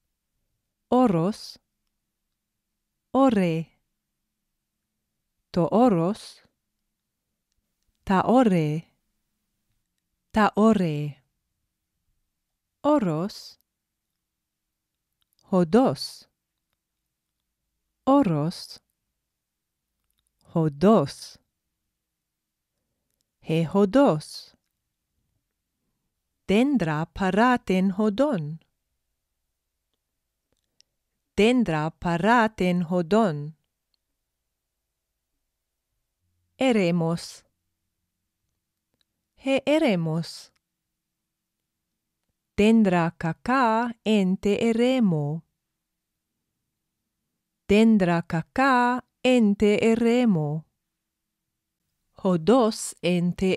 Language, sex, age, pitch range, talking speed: Greek, female, 40-59, 150-220 Hz, 40 wpm